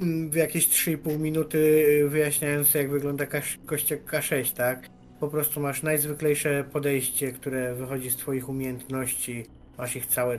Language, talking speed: Polish, 140 wpm